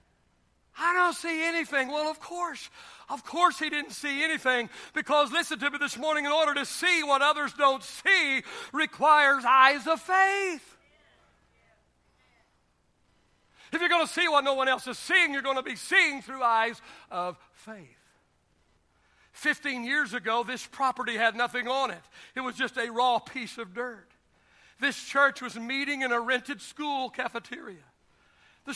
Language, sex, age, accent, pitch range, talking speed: English, male, 60-79, American, 255-305 Hz, 165 wpm